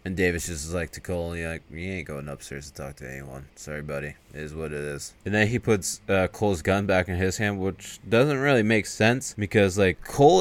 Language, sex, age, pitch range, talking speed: English, male, 20-39, 90-110 Hz, 255 wpm